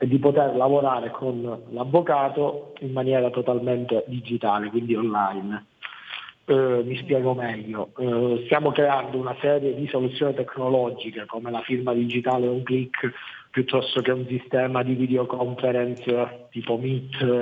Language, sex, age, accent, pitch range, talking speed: Italian, male, 40-59, native, 125-145 Hz, 130 wpm